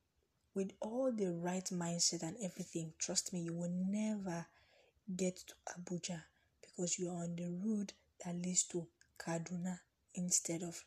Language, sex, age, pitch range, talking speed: English, female, 20-39, 160-195 Hz, 150 wpm